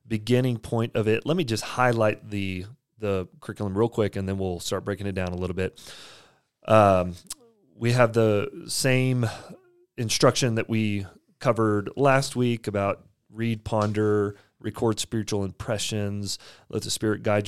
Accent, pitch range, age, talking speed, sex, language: American, 95-120 Hz, 30-49, 150 wpm, male, English